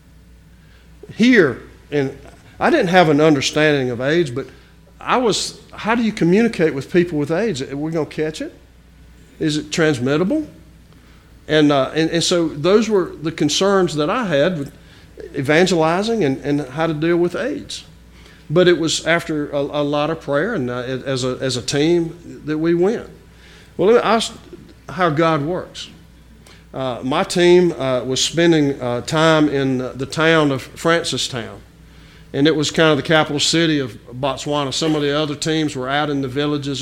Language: English